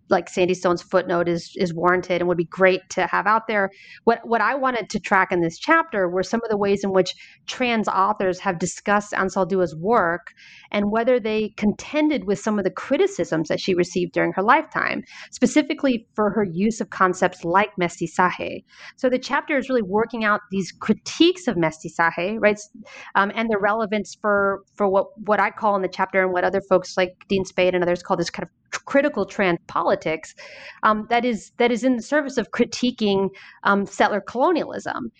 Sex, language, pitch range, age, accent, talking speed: female, English, 180-225 Hz, 30-49, American, 195 wpm